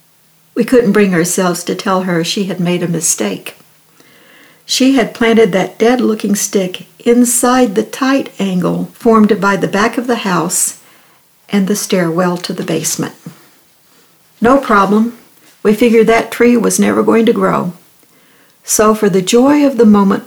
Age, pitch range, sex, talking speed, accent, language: 60-79, 185-235 Hz, female, 155 wpm, American, English